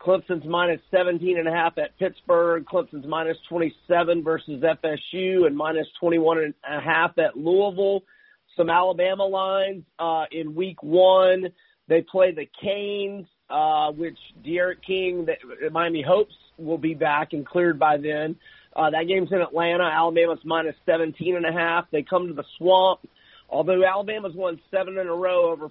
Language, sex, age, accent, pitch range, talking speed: English, male, 40-59, American, 160-185 Hz, 140 wpm